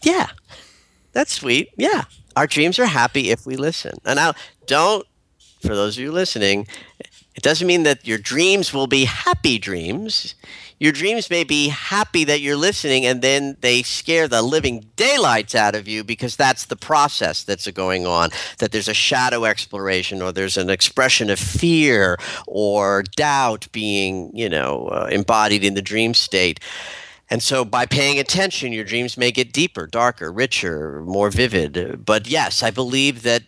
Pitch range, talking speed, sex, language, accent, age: 105-150 Hz, 170 wpm, male, English, American, 50-69